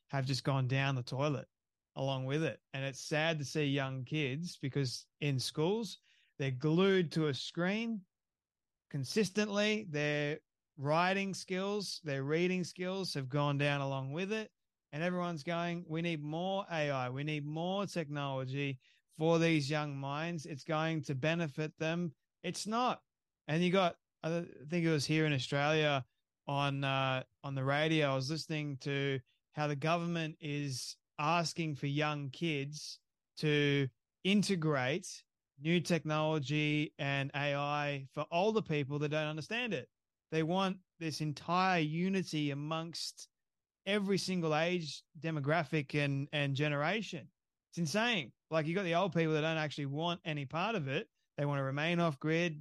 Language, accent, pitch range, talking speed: English, Australian, 145-170 Hz, 150 wpm